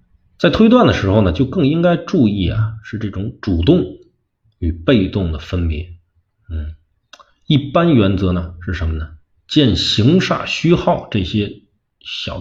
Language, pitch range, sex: Chinese, 85-115 Hz, male